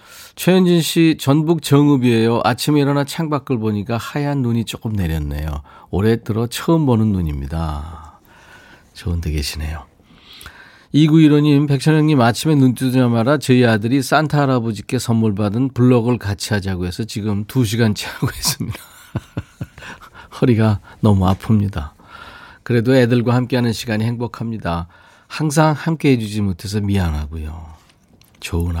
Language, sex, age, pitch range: Korean, male, 40-59, 90-135 Hz